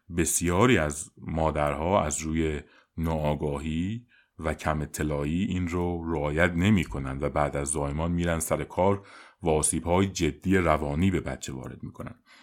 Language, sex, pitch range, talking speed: Persian, male, 75-95 Hz, 135 wpm